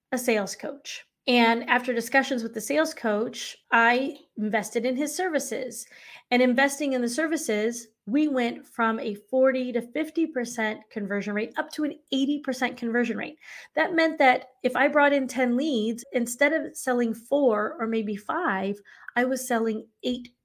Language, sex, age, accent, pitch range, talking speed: English, female, 20-39, American, 220-270 Hz, 160 wpm